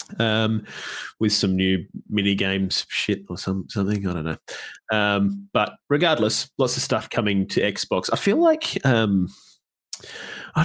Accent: Australian